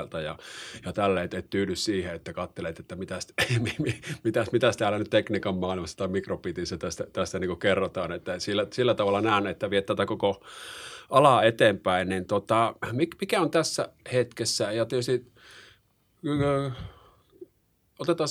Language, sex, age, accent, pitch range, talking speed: Finnish, male, 30-49, native, 90-115 Hz, 130 wpm